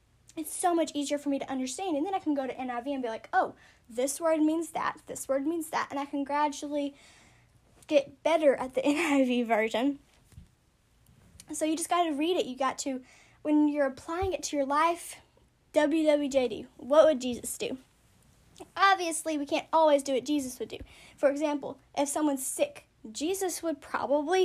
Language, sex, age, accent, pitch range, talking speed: English, female, 10-29, American, 265-315 Hz, 185 wpm